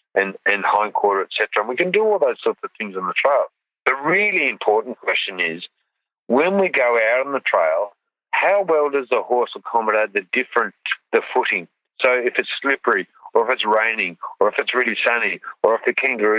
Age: 50-69